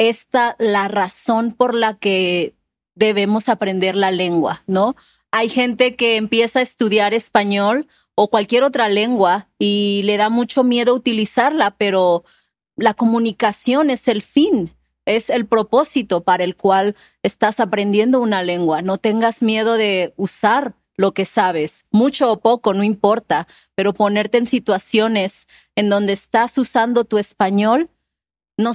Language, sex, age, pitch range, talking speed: English, female, 30-49, 205-240 Hz, 140 wpm